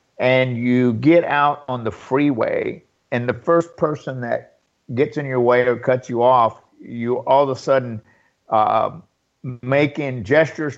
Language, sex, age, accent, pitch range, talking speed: English, male, 50-69, American, 130-170 Hz, 155 wpm